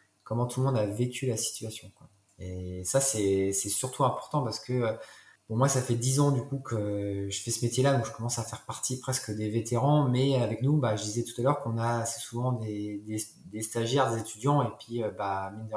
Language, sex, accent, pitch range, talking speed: French, male, French, 105-125 Hz, 245 wpm